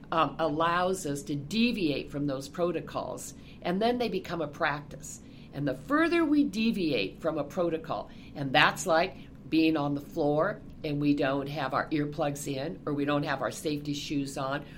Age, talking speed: 50-69, 180 wpm